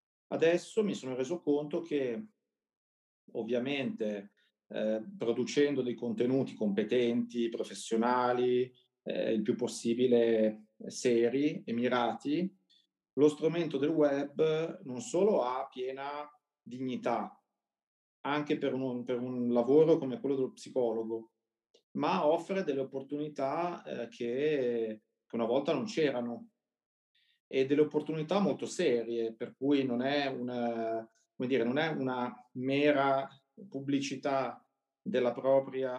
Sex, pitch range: male, 120-150 Hz